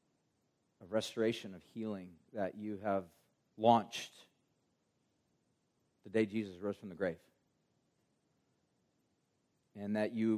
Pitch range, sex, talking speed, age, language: 105-125 Hz, male, 105 wpm, 40-59, English